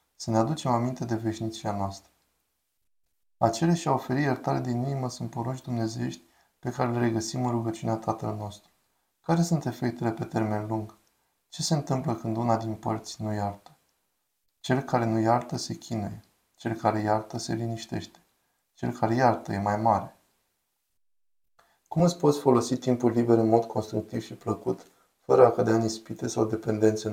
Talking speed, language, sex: 160 wpm, Romanian, male